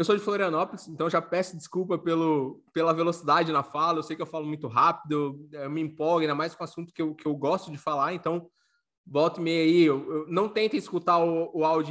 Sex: male